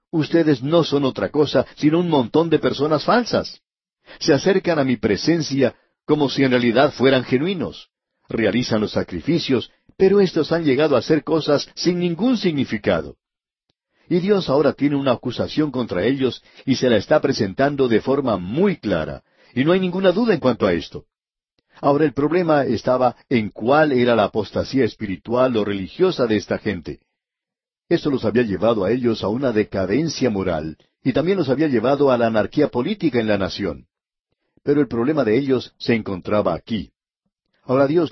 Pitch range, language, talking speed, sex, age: 110-150 Hz, Spanish, 170 wpm, male, 60-79